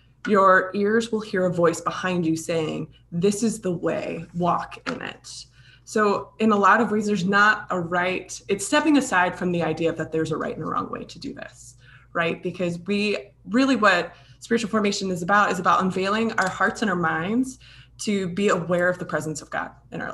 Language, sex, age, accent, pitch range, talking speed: English, female, 20-39, American, 160-205 Hz, 210 wpm